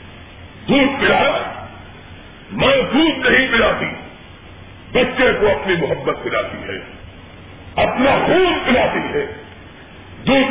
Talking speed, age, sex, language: 95 wpm, 50-69, female, Urdu